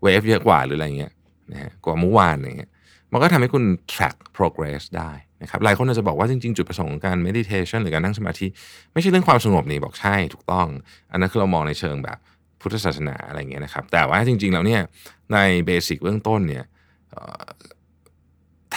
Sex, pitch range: male, 80-105 Hz